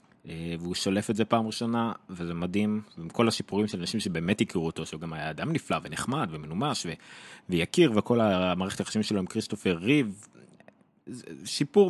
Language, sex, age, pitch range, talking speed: Hebrew, male, 30-49, 80-110 Hz, 165 wpm